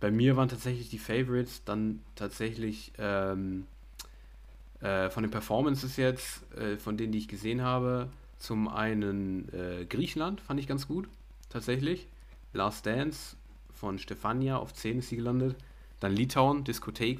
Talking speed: 145 wpm